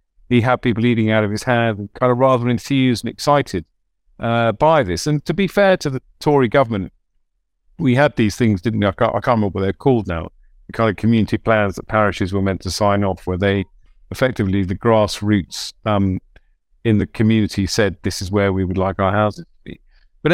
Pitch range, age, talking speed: 95-120 Hz, 50-69, 220 wpm